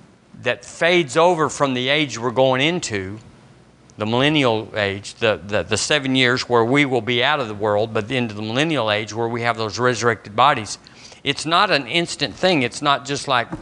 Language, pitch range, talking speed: English, 120-150 Hz, 200 wpm